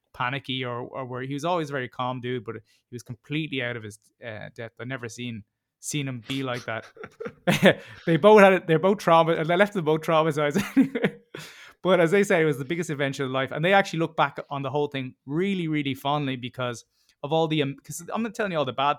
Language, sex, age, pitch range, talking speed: English, male, 20-39, 130-165 Hz, 245 wpm